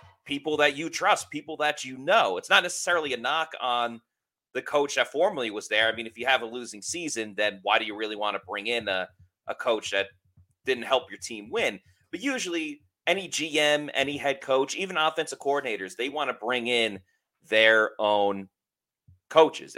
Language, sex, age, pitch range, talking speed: English, male, 30-49, 105-145 Hz, 195 wpm